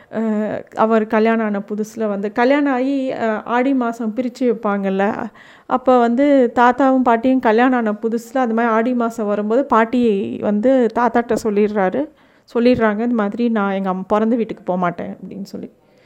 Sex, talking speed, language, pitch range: female, 140 wpm, Tamil, 215-260 Hz